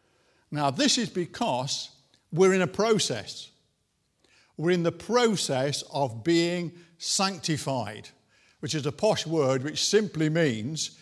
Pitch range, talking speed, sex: 135-195 Hz, 125 wpm, male